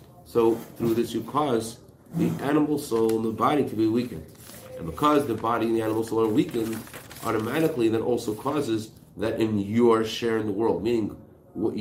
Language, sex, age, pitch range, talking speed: English, male, 40-59, 110-120 Hz, 190 wpm